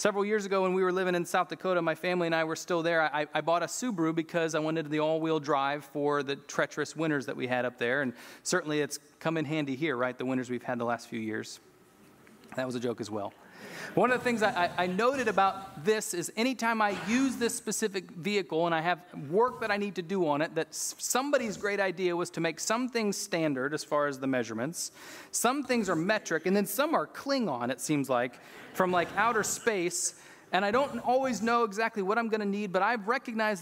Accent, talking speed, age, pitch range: American, 235 wpm, 30-49, 160-220 Hz